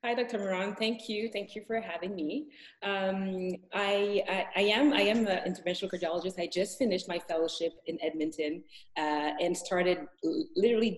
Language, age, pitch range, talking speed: English, 30-49, 170-220 Hz, 170 wpm